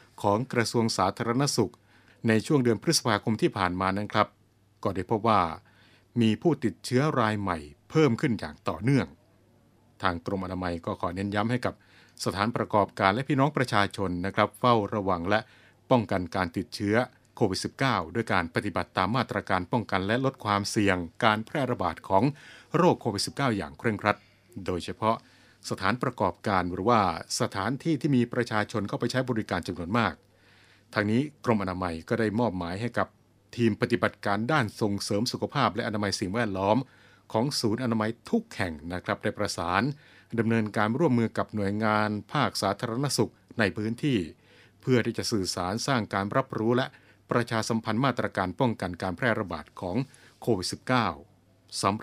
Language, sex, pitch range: Thai, male, 95-120 Hz